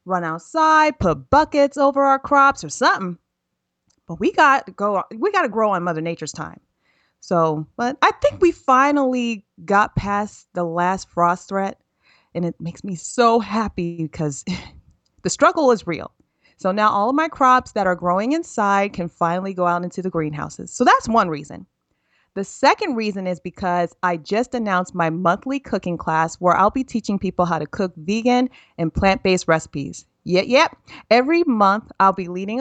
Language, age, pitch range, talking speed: English, 30-49, 175-245 Hz, 175 wpm